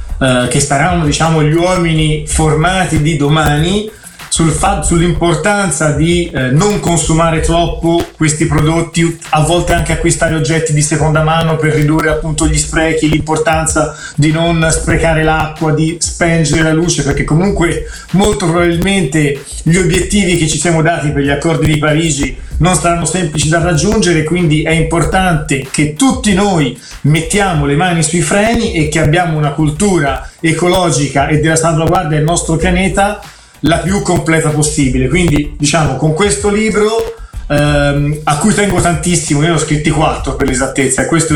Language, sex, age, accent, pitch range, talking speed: Italian, male, 30-49, native, 155-175 Hz, 155 wpm